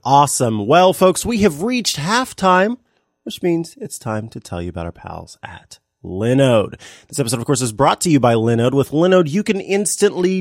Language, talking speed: English, 195 wpm